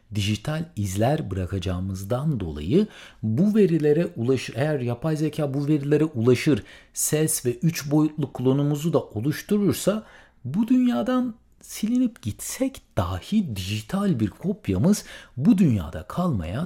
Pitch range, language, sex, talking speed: 110-185 Hz, Turkish, male, 110 wpm